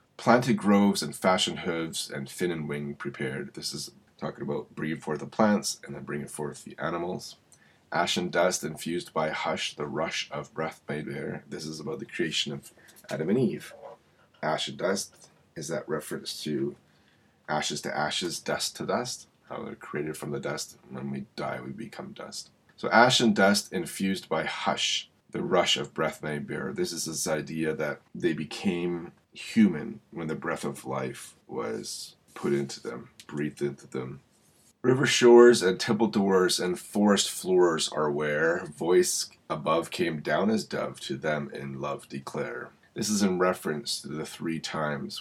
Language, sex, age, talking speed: English, male, 30-49, 175 wpm